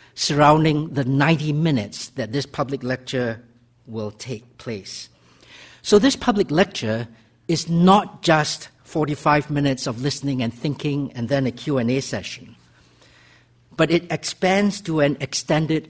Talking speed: 130 wpm